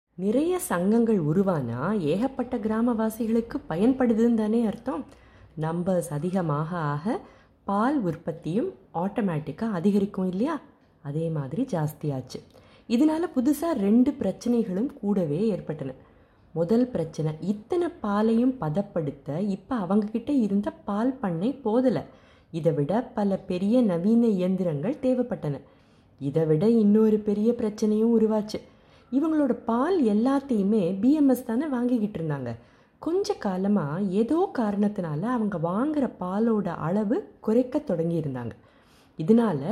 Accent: native